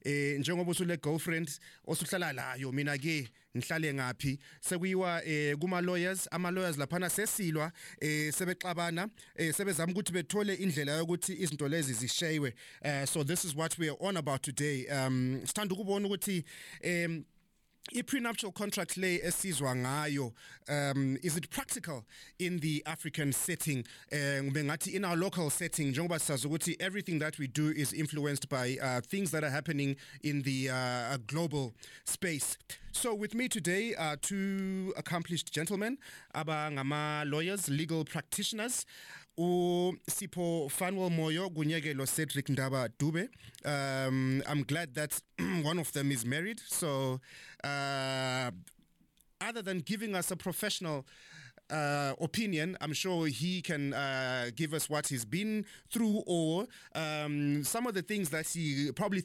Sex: male